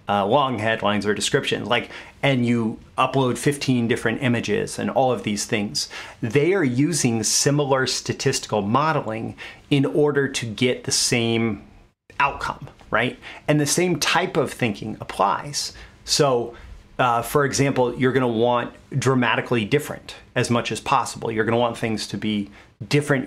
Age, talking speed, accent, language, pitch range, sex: 30-49, 155 wpm, American, English, 110-145 Hz, male